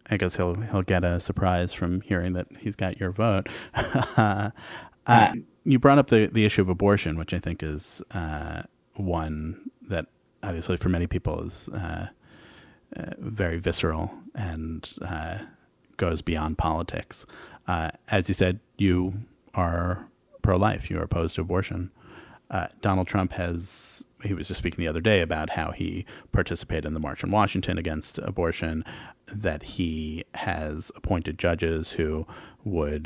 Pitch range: 85-100 Hz